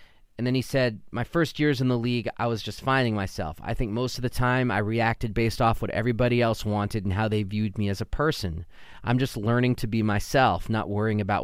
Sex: male